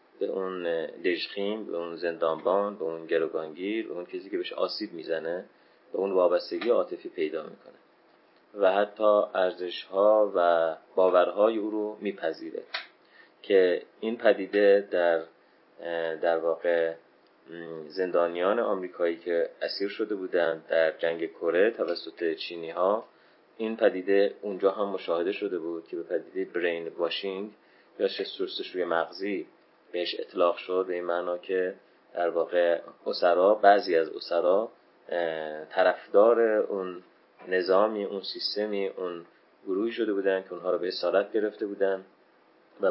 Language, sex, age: Persian, male, 30-49